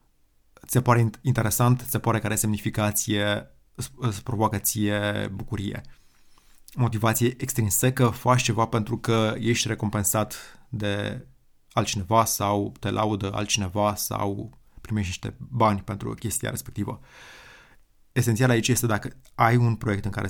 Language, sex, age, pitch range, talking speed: Romanian, male, 20-39, 105-120 Hz, 125 wpm